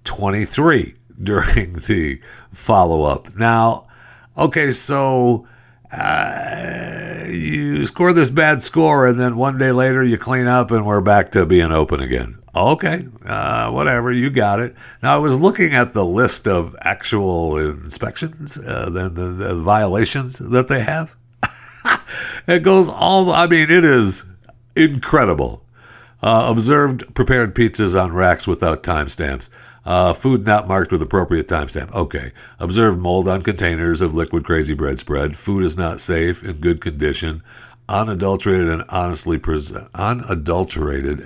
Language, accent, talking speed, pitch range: English, American, 140 wpm, 85-120 Hz